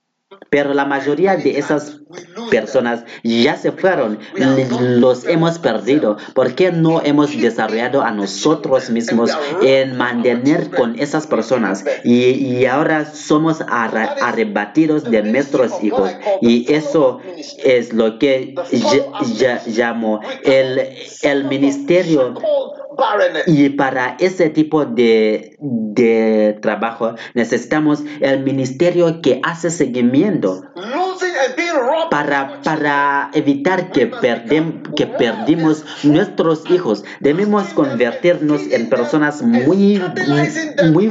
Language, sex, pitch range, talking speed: Spanish, male, 125-165 Hz, 105 wpm